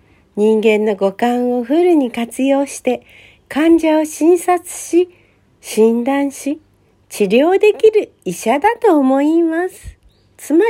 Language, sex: Japanese, female